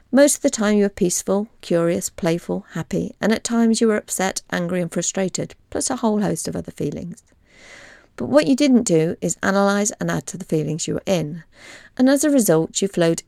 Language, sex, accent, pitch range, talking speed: English, female, British, 165-225 Hz, 215 wpm